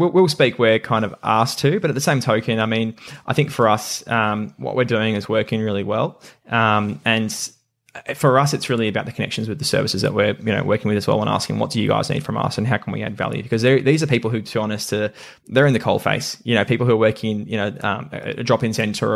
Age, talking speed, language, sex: 10-29, 275 wpm, English, male